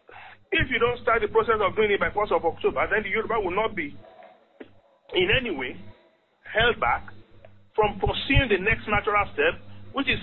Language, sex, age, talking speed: English, male, 40-59, 195 wpm